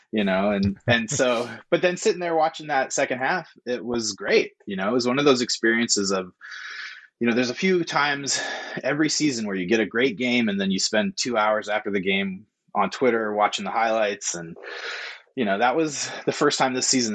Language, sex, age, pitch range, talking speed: English, male, 20-39, 105-140 Hz, 220 wpm